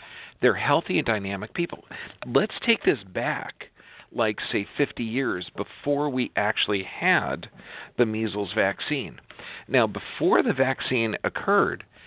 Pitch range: 100-140 Hz